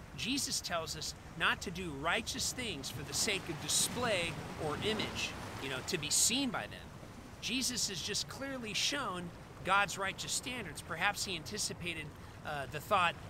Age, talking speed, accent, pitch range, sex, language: 40-59, 160 wpm, American, 145-210 Hz, male, English